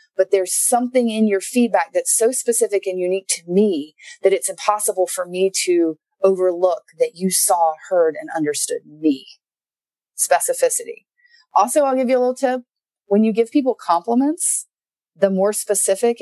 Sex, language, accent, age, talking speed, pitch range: female, English, American, 30-49, 160 wpm, 175-250 Hz